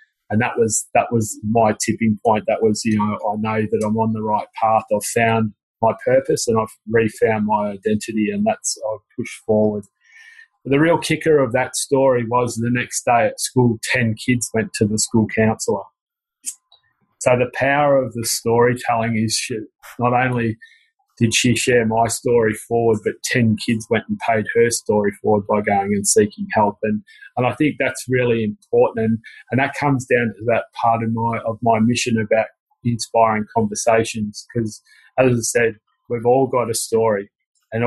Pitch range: 110-125 Hz